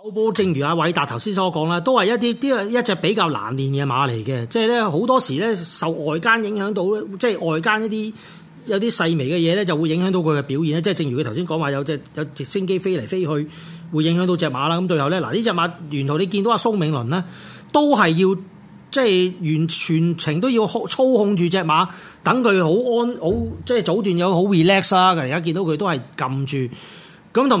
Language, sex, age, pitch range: Chinese, male, 30-49, 155-205 Hz